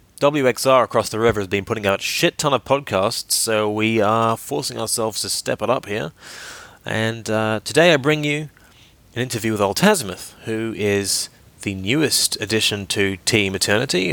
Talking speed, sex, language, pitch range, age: 170 wpm, male, English, 100-125 Hz, 20-39